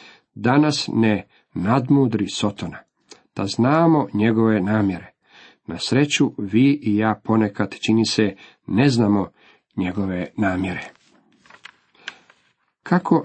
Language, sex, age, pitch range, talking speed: Croatian, male, 50-69, 105-125 Hz, 95 wpm